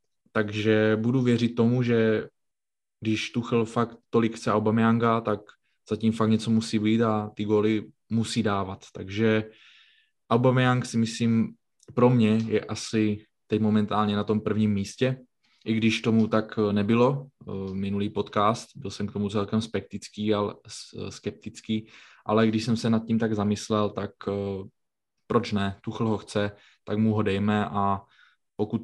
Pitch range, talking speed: 105-115 Hz, 150 wpm